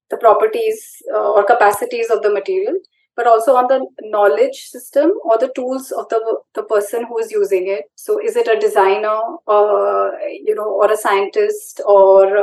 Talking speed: 180 wpm